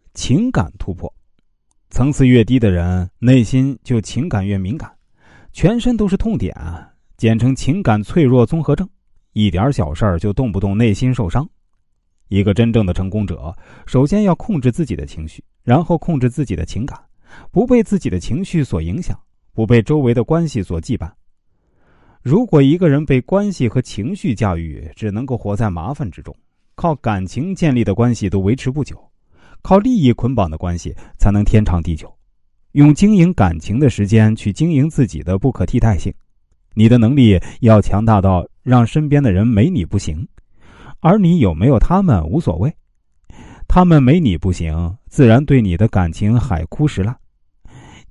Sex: male